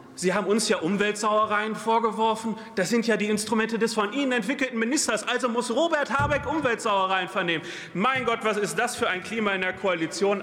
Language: German